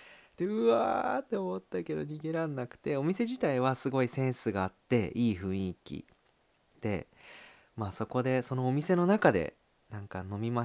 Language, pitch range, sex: Japanese, 95-140 Hz, male